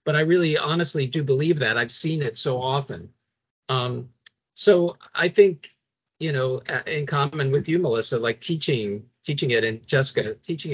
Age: 50-69